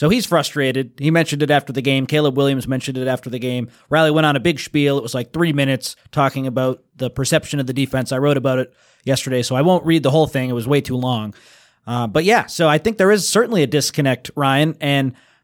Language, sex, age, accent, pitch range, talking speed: English, male, 30-49, American, 135-175 Hz, 250 wpm